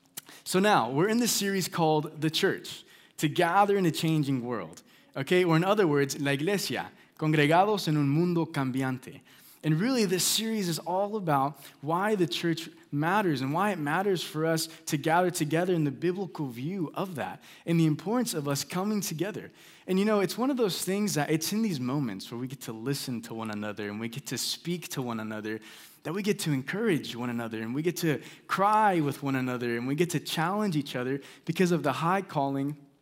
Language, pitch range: English, 140-185 Hz